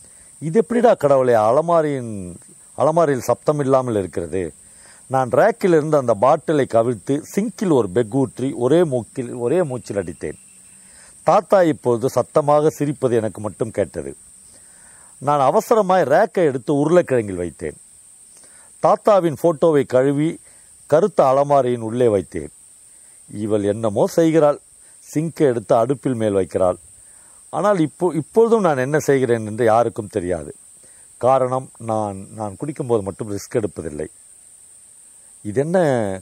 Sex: male